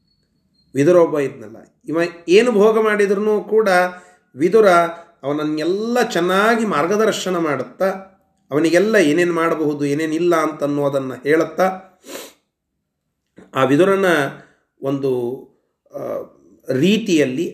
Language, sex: Kannada, male